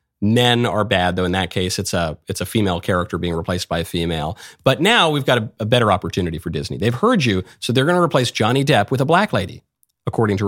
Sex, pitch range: male, 100-130 Hz